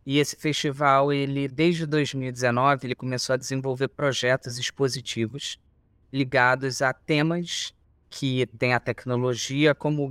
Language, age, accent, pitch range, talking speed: Portuguese, 20-39, Brazilian, 125-155 Hz, 125 wpm